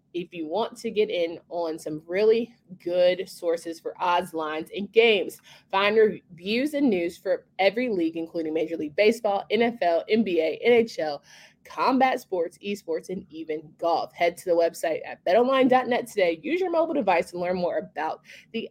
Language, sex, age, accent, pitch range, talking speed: English, female, 20-39, American, 170-210 Hz, 165 wpm